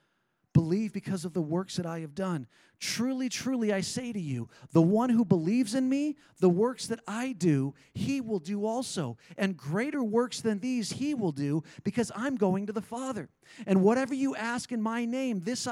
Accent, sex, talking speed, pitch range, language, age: American, male, 200 wpm, 180-255 Hz, English, 40-59